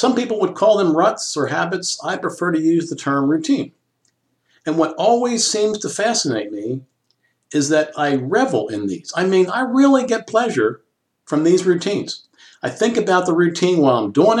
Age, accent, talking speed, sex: 50-69, American, 190 wpm, male